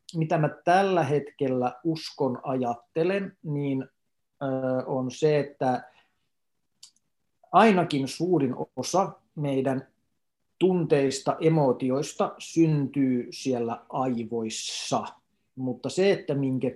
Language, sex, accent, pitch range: Finnish, male, native, 125-165 Hz